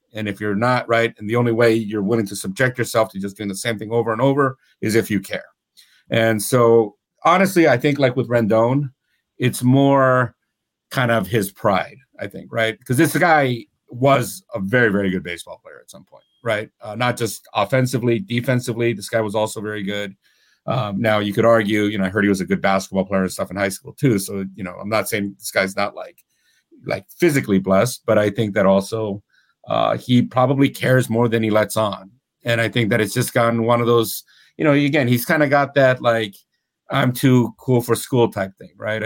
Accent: American